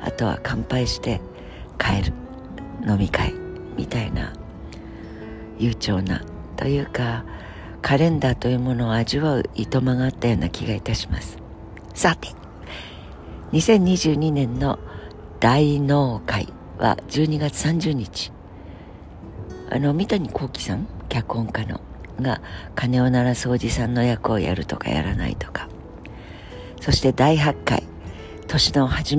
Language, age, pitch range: Japanese, 60-79, 85-130 Hz